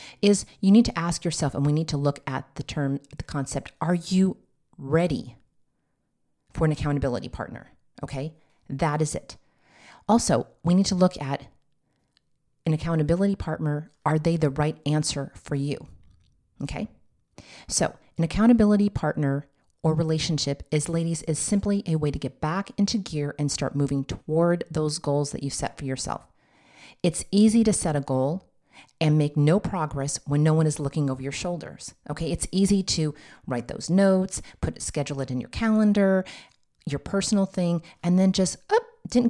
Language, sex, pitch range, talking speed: English, female, 145-190 Hz, 170 wpm